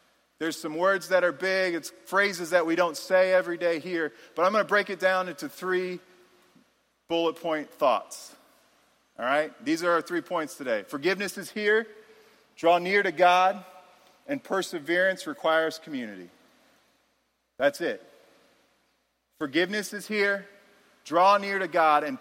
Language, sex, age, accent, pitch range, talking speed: English, male, 40-59, American, 170-215 Hz, 150 wpm